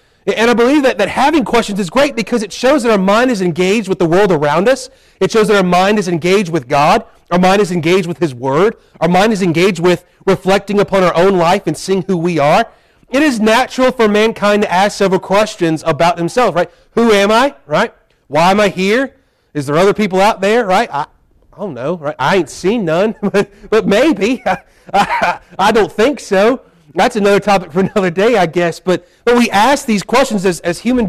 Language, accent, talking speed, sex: English, American, 220 wpm, male